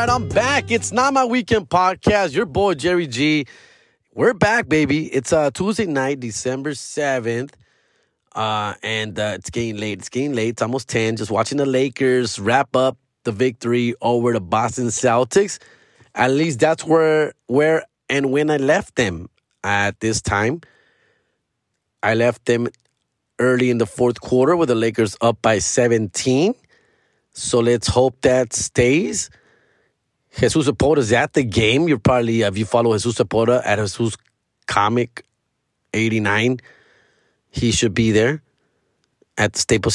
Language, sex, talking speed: English, male, 155 wpm